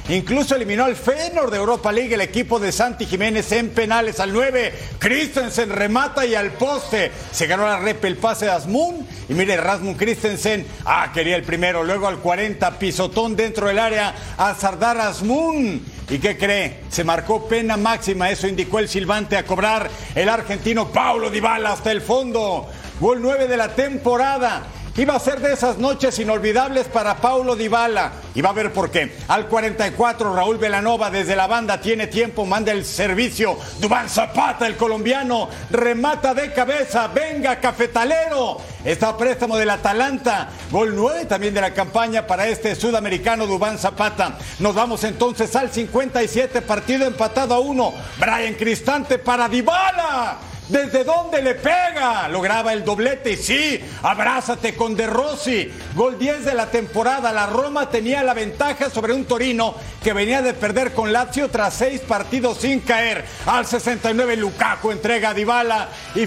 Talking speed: 165 wpm